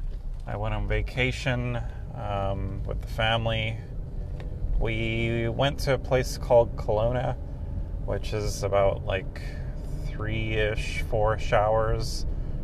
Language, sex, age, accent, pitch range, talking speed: English, male, 30-49, American, 100-125 Hz, 90 wpm